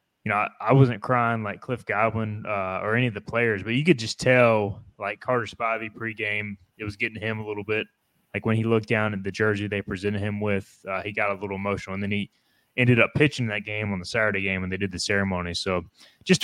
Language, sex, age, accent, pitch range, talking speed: English, male, 20-39, American, 100-125 Hz, 245 wpm